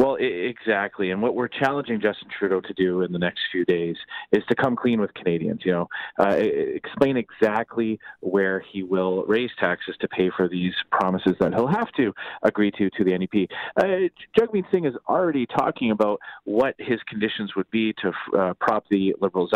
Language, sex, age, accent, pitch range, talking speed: English, male, 30-49, American, 100-115 Hz, 185 wpm